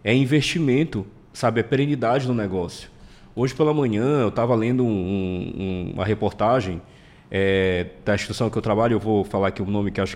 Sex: male